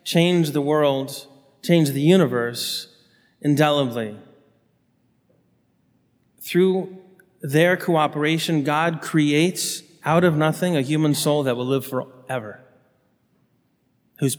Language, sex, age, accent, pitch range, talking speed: English, male, 30-49, American, 125-150 Hz, 95 wpm